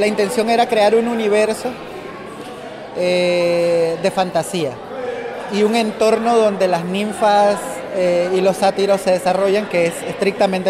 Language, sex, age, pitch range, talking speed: Spanish, male, 30-49, 185-225 Hz, 135 wpm